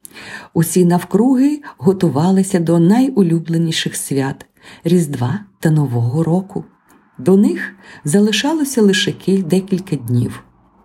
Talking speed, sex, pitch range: 100 wpm, female, 155-200 Hz